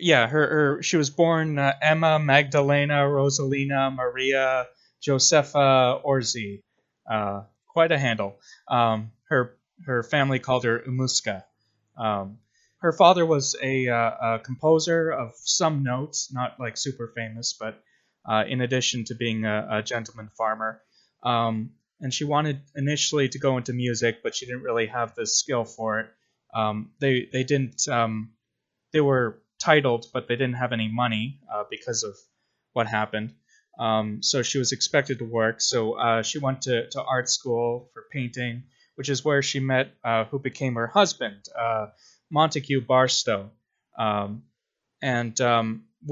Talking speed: 155 wpm